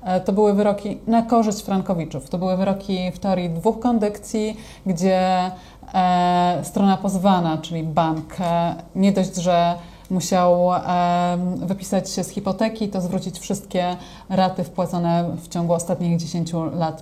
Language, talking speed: Polish, 125 wpm